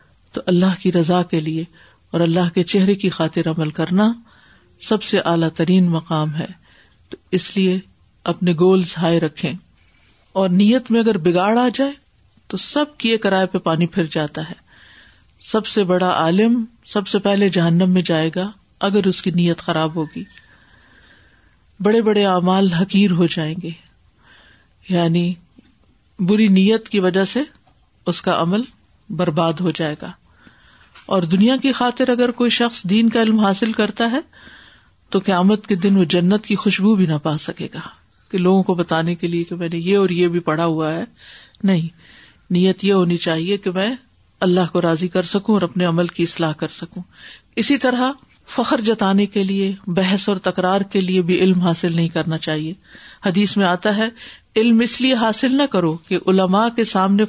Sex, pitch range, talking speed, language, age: female, 170-210 Hz, 180 wpm, Urdu, 50-69